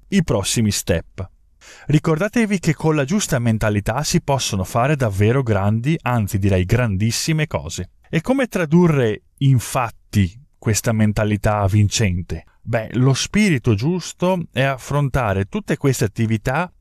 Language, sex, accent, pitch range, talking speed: Italian, male, native, 110-160 Hz, 120 wpm